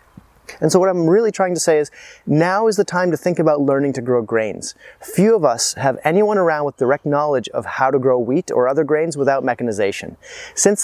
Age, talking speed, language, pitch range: 30-49, 220 wpm, English, 135-180 Hz